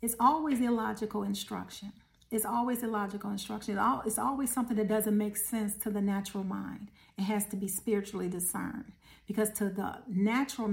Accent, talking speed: American, 160 wpm